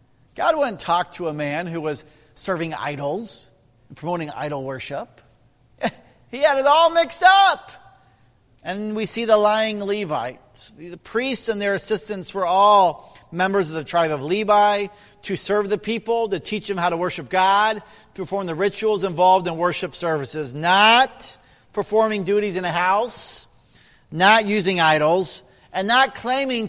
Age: 40-59